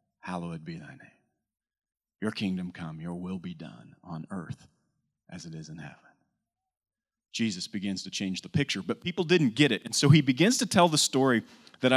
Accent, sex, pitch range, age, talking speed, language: American, male, 105-150 Hz, 30-49, 190 wpm, English